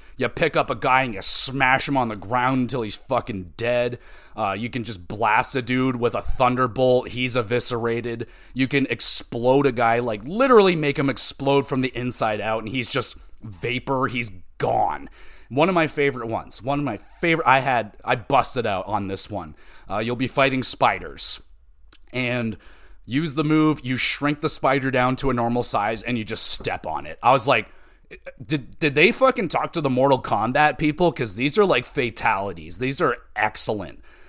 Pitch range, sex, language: 110-140 Hz, male, English